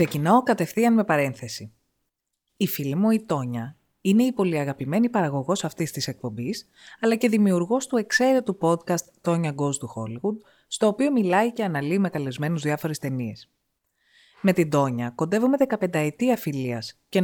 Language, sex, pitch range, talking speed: Greek, female, 140-235 Hz, 155 wpm